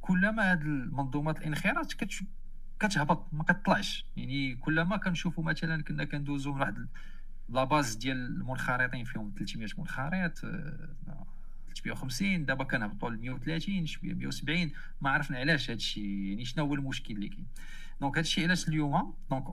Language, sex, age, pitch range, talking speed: Arabic, male, 40-59, 120-165 Hz, 150 wpm